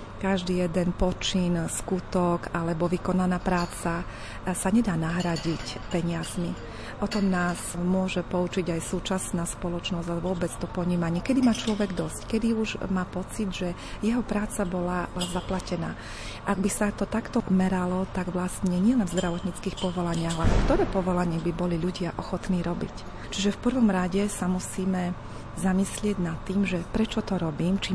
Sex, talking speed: female, 150 wpm